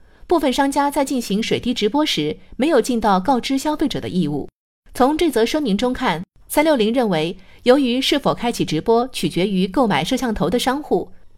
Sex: female